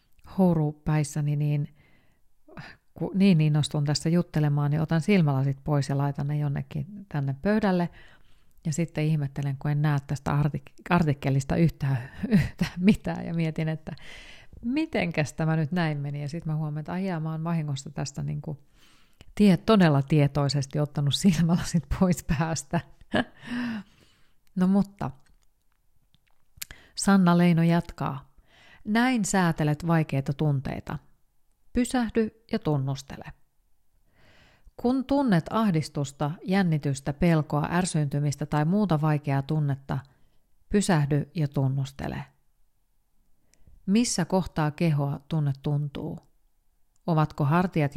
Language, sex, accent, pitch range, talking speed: Finnish, female, native, 145-175 Hz, 105 wpm